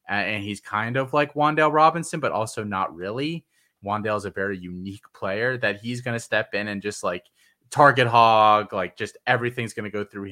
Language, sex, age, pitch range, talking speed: English, male, 20-39, 100-125 Hz, 190 wpm